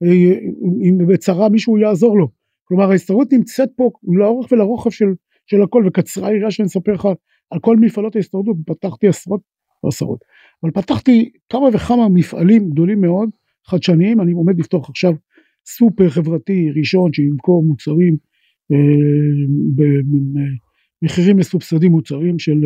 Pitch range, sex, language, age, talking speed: 155-210 Hz, male, Hebrew, 50-69, 125 wpm